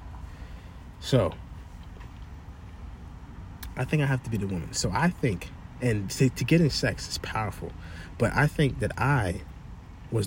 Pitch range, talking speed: 90-120 Hz, 145 wpm